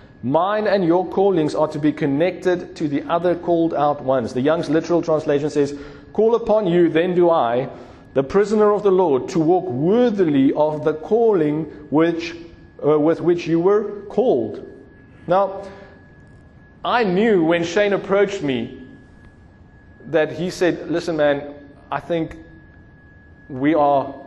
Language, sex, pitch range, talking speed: English, male, 140-180 Hz, 145 wpm